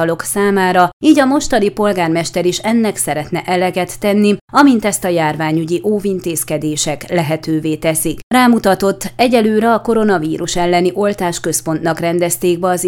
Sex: female